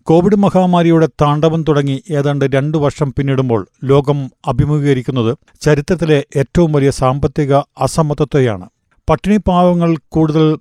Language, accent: Malayalam, native